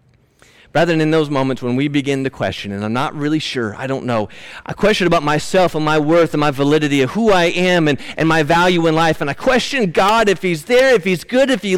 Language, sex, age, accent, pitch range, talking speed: English, male, 40-59, American, 160-245 Hz, 250 wpm